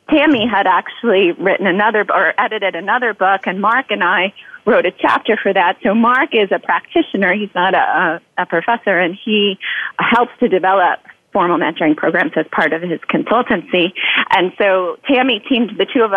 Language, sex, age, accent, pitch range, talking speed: English, female, 30-49, American, 180-220 Hz, 180 wpm